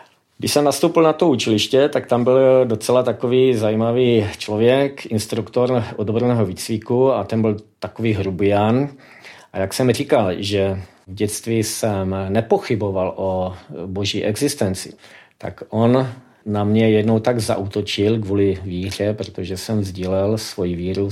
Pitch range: 100-120 Hz